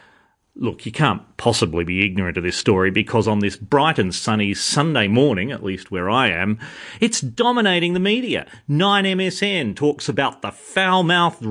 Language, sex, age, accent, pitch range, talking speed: English, male, 40-59, Australian, 140-210 Hz, 165 wpm